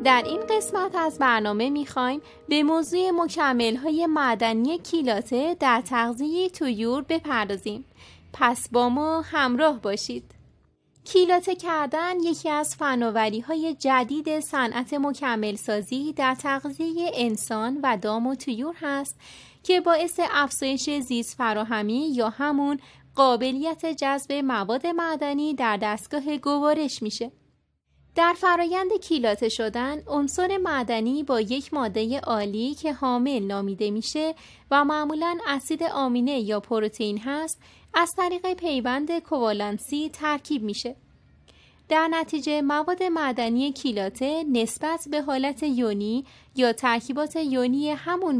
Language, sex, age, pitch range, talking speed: Persian, female, 30-49, 235-315 Hz, 115 wpm